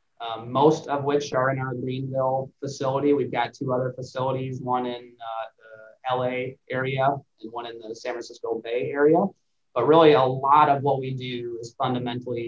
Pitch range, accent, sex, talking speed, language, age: 120-145 Hz, American, male, 185 wpm, English, 20-39